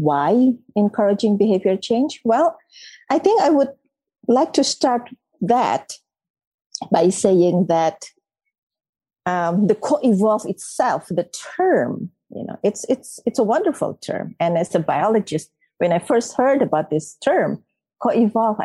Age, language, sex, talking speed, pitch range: 50-69, Indonesian, female, 135 wpm, 180-255 Hz